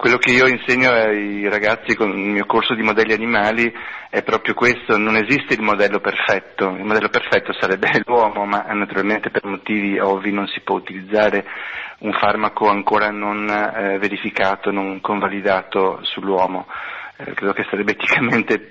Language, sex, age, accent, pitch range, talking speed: Italian, male, 40-59, native, 100-115 Hz, 155 wpm